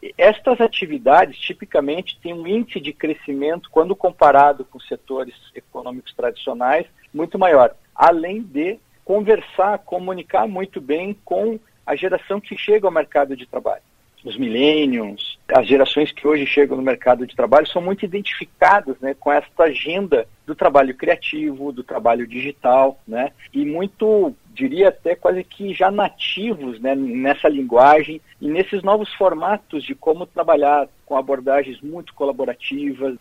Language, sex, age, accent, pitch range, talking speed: Portuguese, male, 50-69, Brazilian, 140-195 Hz, 140 wpm